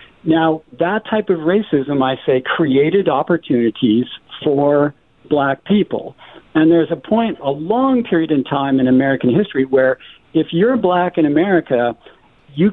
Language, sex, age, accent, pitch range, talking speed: English, male, 60-79, American, 140-185 Hz, 145 wpm